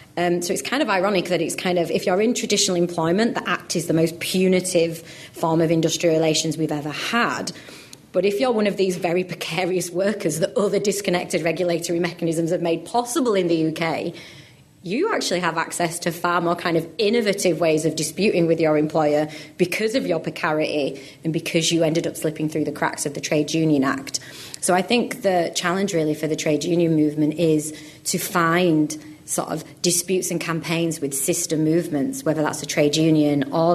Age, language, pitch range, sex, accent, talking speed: 30-49, English, 155-180 Hz, female, British, 195 wpm